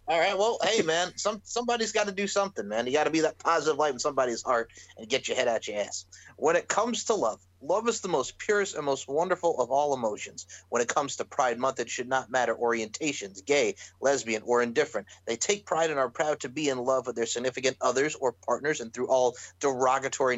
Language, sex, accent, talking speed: English, male, American, 235 wpm